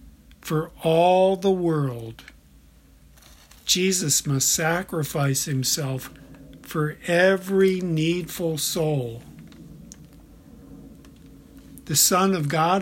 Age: 50-69